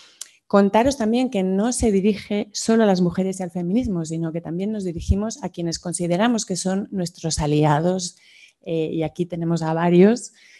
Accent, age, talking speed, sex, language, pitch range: Spanish, 30-49, 175 wpm, female, Spanish, 160-185 Hz